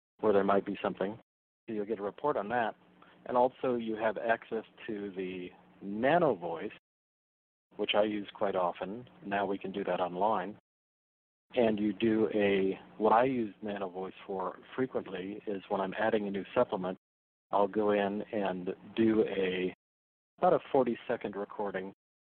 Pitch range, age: 95-115 Hz, 40-59